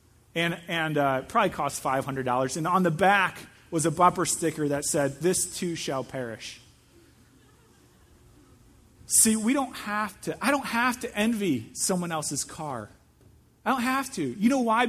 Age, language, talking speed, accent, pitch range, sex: 30-49, English, 165 wpm, American, 195-285 Hz, male